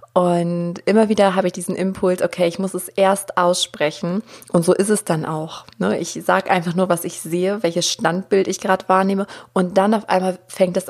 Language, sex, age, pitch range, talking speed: German, female, 30-49, 180-210 Hz, 205 wpm